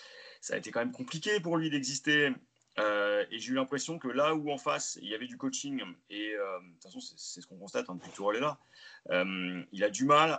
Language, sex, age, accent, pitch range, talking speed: French, male, 30-49, French, 115-175 Hz, 250 wpm